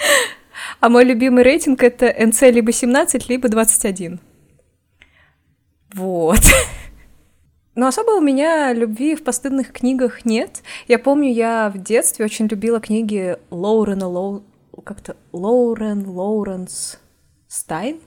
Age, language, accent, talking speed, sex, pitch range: 20-39, Russian, native, 115 wpm, female, 195-240 Hz